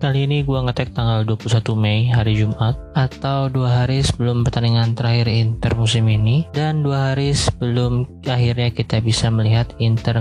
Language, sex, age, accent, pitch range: Chinese, male, 20-39, Indonesian, 110-130 Hz